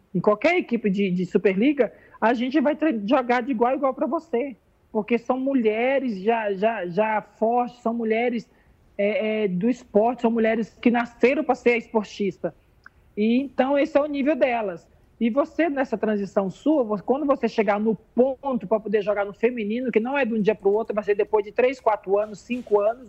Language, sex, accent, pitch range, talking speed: Portuguese, male, Brazilian, 215-260 Hz, 200 wpm